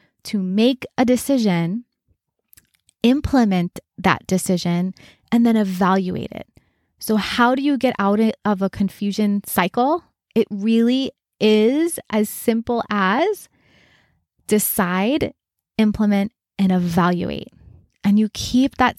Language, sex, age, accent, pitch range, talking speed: English, female, 20-39, American, 200-245 Hz, 110 wpm